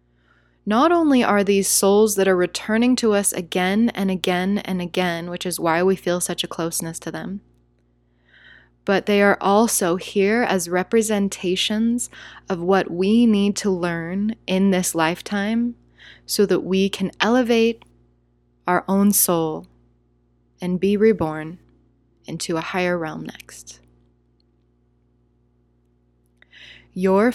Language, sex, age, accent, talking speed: English, female, 20-39, American, 125 wpm